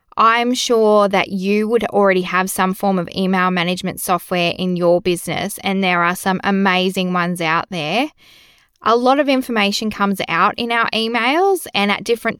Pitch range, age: 180-215 Hz, 20-39